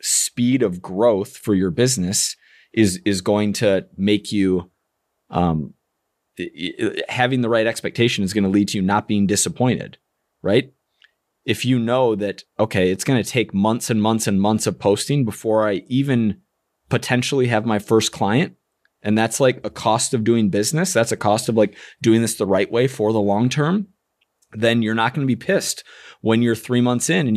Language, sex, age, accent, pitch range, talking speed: English, male, 30-49, American, 100-125 Hz, 190 wpm